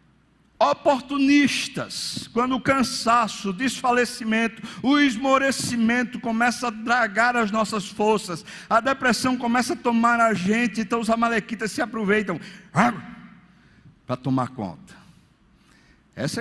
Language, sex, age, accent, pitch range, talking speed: Portuguese, male, 60-79, Brazilian, 160-245 Hz, 110 wpm